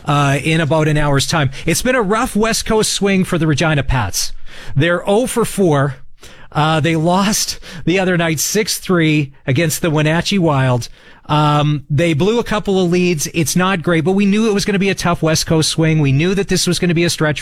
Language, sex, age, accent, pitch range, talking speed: English, male, 40-59, American, 140-180 Hz, 220 wpm